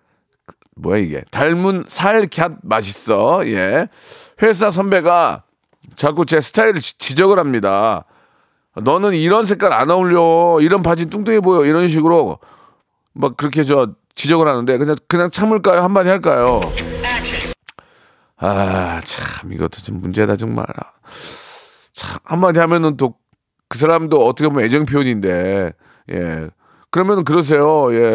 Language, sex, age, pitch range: Korean, male, 40-59, 125-185 Hz